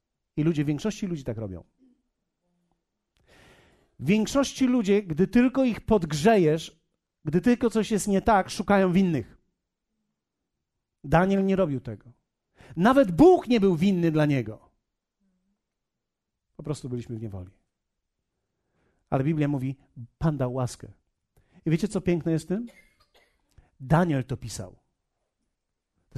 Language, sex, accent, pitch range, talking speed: Polish, male, native, 125-205 Hz, 125 wpm